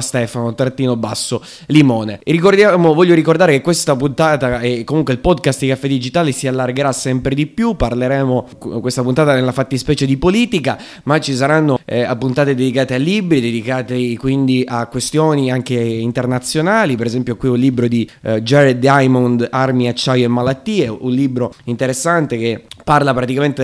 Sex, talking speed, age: male, 160 wpm, 20-39